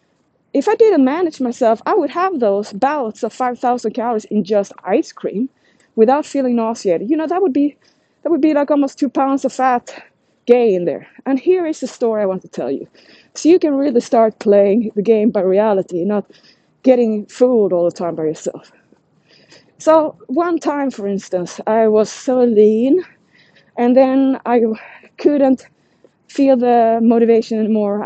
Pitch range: 215-265 Hz